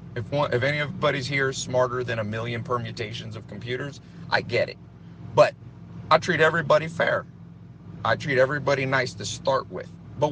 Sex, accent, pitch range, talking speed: male, American, 115-150 Hz, 165 wpm